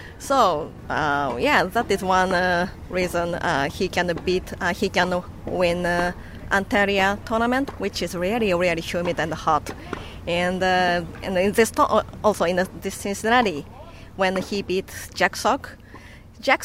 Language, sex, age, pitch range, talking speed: English, female, 20-39, 180-220 Hz, 155 wpm